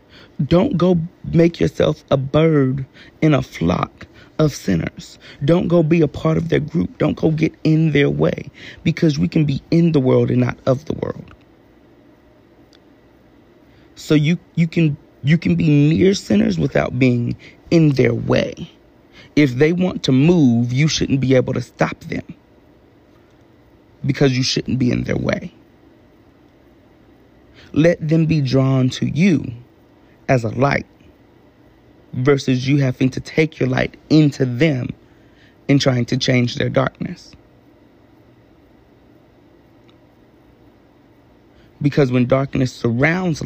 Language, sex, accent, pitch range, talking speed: English, male, American, 130-160 Hz, 135 wpm